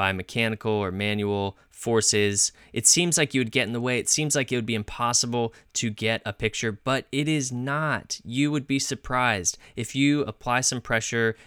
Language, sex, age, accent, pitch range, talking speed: English, male, 20-39, American, 105-125 Hz, 200 wpm